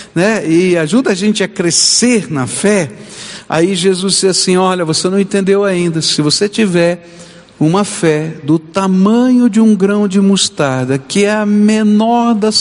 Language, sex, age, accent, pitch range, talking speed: Portuguese, male, 60-79, Brazilian, 145-205 Hz, 165 wpm